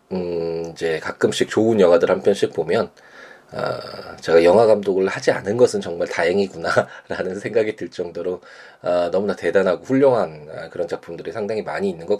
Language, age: Korean, 20-39